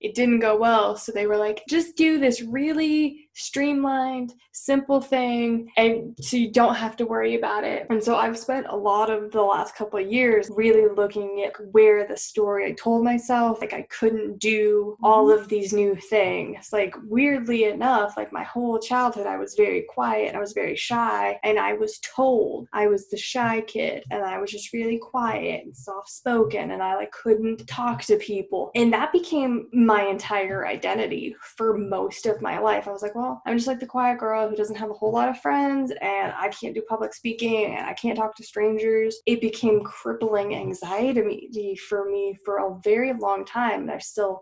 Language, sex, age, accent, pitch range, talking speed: English, female, 10-29, American, 210-245 Hz, 200 wpm